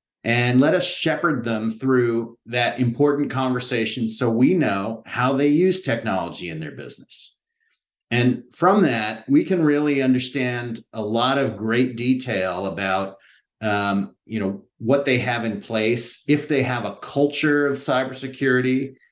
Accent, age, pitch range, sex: American, 30-49, 115-140 Hz, male